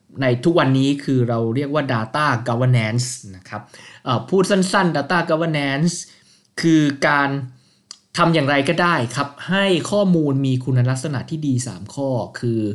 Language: Thai